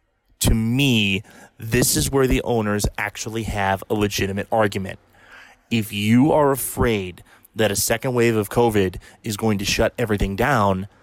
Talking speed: 150 wpm